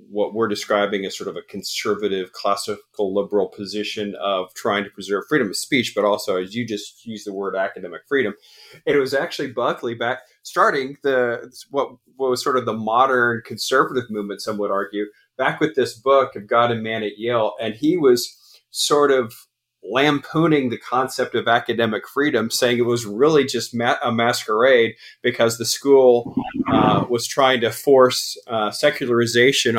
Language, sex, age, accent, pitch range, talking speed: English, male, 30-49, American, 110-135 Hz, 170 wpm